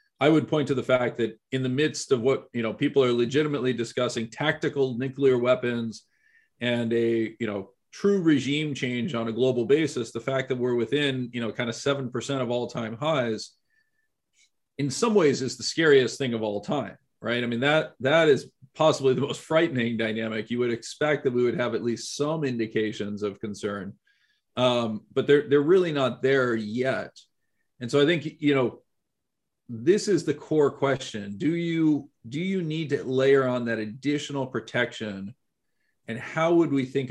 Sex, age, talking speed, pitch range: male, 40-59, 185 wpm, 115-145 Hz